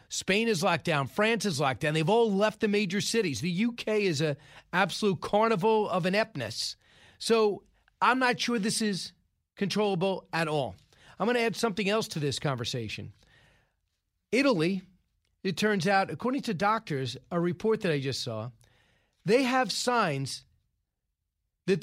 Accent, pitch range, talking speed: American, 165-220 Hz, 155 wpm